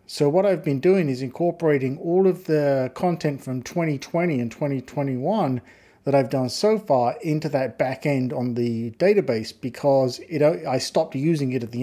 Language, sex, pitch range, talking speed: English, male, 125-155 Hz, 170 wpm